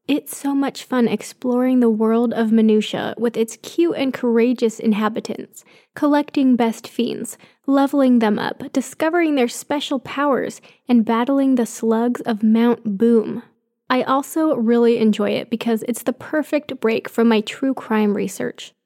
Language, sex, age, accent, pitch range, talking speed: English, female, 10-29, American, 225-275 Hz, 150 wpm